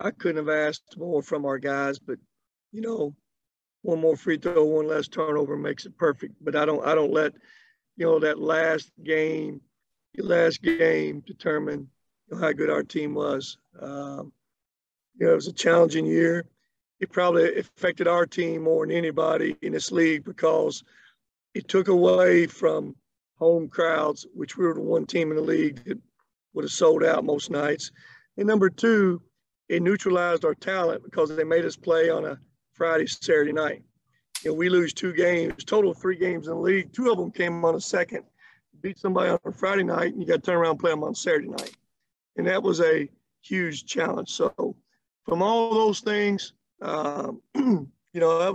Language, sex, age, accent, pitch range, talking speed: English, male, 50-69, American, 160-190 Hz, 190 wpm